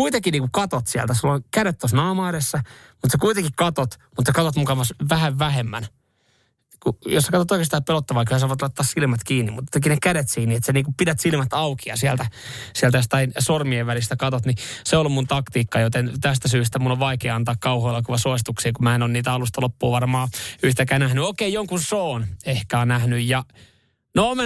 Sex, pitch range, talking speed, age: male, 120-145 Hz, 200 wpm, 20-39